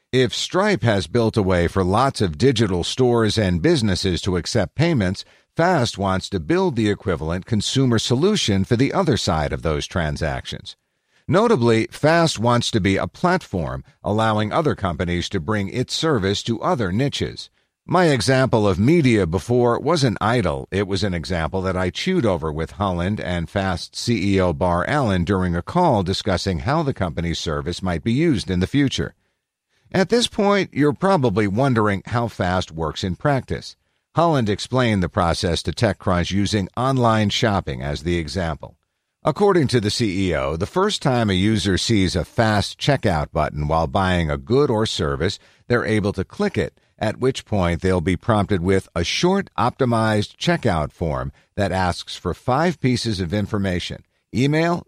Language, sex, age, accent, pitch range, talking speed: English, male, 50-69, American, 90-125 Hz, 165 wpm